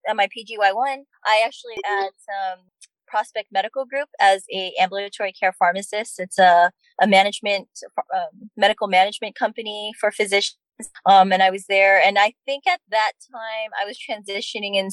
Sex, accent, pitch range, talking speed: female, American, 190-220 Hz, 160 wpm